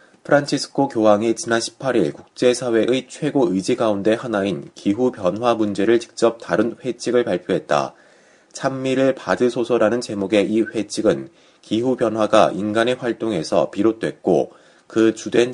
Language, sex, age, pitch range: Korean, male, 30-49, 105-125 Hz